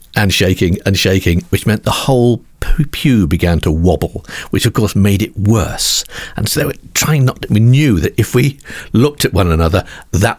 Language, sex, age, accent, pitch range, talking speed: English, male, 50-69, British, 95-125 Hz, 200 wpm